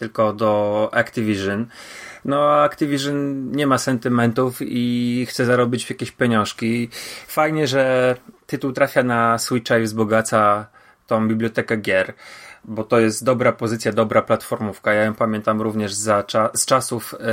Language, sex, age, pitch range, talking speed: Polish, male, 30-49, 115-135 Hz, 135 wpm